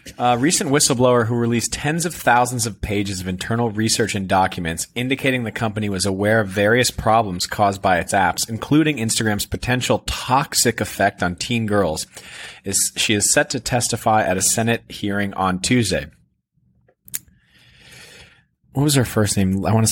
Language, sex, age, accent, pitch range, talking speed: English, male, 30-49, American, 100-125 Hz, 165 wpm